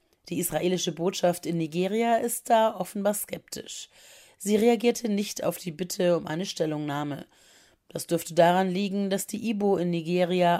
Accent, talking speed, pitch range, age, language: German, 155 wpm, 165-205 Hz, 30-49, German